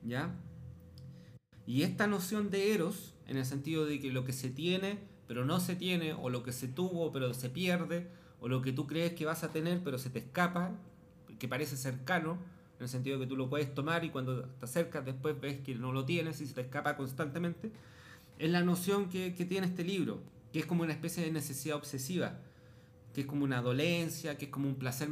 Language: Spanish